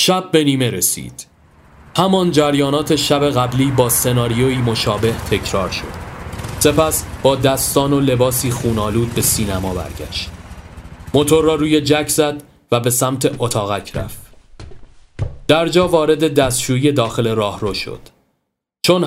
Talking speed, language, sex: 125 wpm, Persian, male